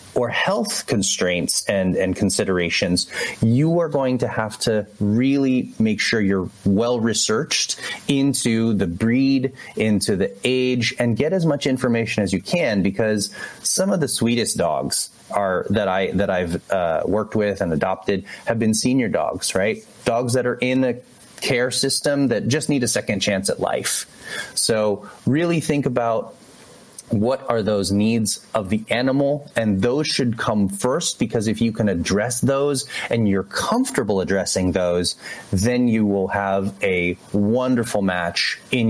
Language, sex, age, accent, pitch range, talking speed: English, male, 30-49, American, 100-130 Hz, 160 wpm